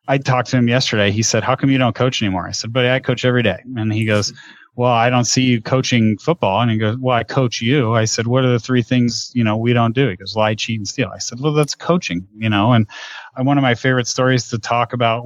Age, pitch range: 30-49, 110-125 Hz